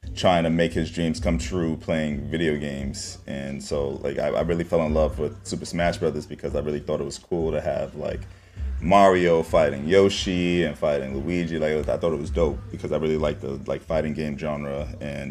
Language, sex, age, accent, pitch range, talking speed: English, male, 30-49, American, 75-90 Hz, 215 wpm